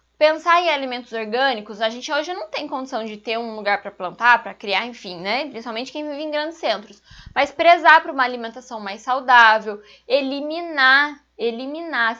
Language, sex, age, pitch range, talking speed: Portuguese, female, 10-29, 220-275 Hz, 170 wpm